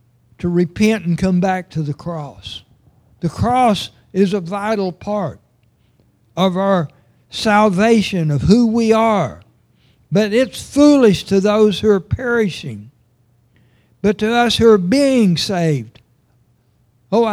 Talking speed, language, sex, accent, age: 130 wpm, English, male, American, 60-79